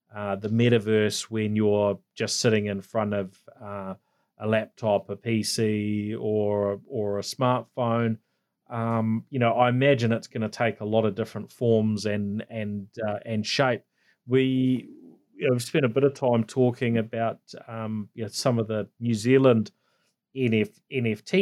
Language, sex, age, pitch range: English, male, 30-49, 105-120 Hz